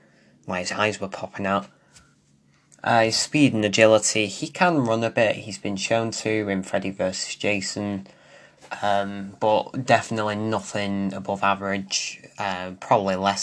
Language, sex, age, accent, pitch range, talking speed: English, male, 20-39, British, 100-115 Hz, 145 wpm